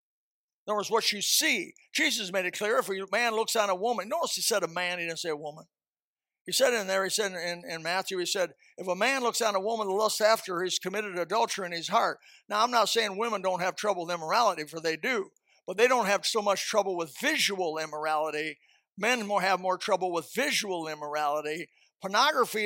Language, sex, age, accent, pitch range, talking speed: English, male, 50-69, American, 170-210 Hz, 230 wpm